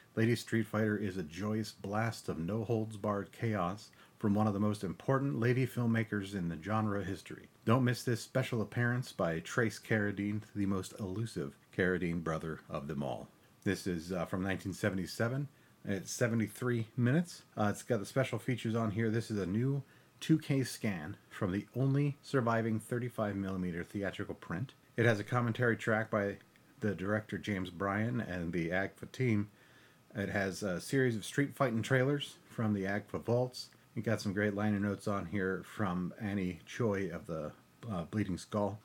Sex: male